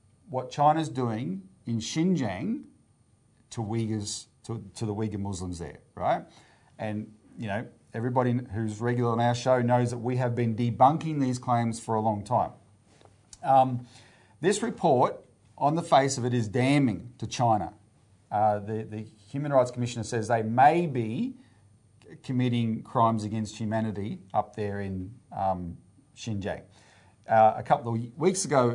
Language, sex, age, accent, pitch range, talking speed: English, male, 40-59, Australian, 110-130 Hz, 150 wpm